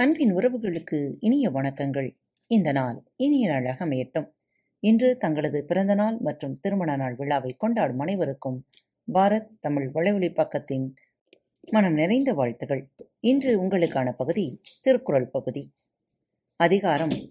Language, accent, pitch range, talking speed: Tamil, native, 140-215 Hz, 110 wpm